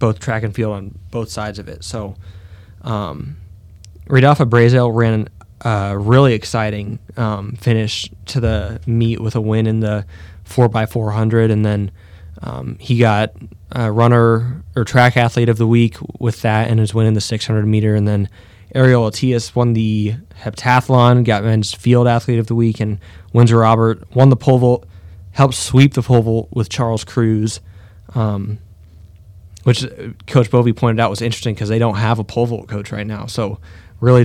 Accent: American